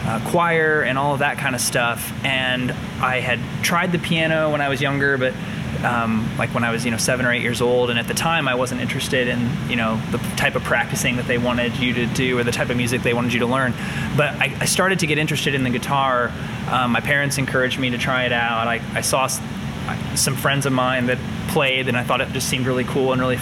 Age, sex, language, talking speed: 20-39, male, English, 255 wpm